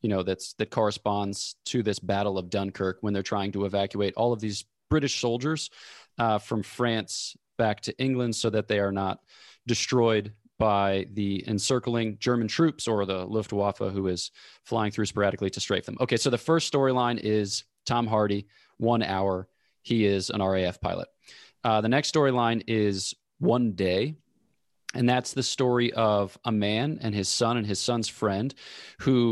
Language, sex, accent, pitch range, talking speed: English, male, American, 100-120 Hz, 175 wpm